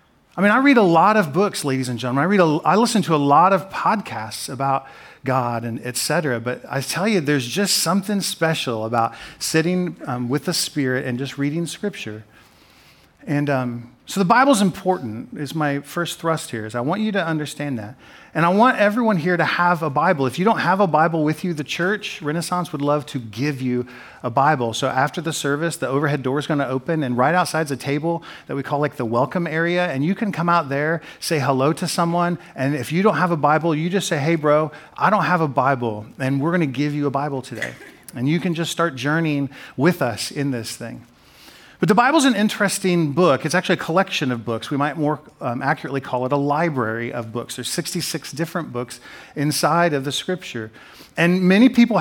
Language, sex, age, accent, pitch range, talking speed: English, male, 40-59, American, 135-175 Hz, 225 wpm